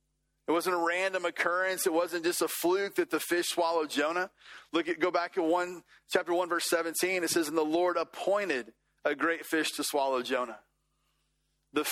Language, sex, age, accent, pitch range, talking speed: English, male, 30-49, American, 155-190 Hz, 190 wpm